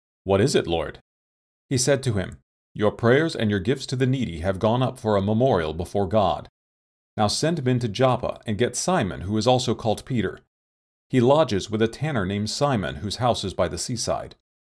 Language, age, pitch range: English, 40-59, 95-130 Hz